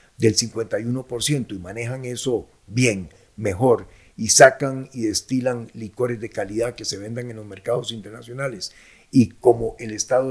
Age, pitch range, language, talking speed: 50-69, 115-165 Hz, Spanish, 145 wpm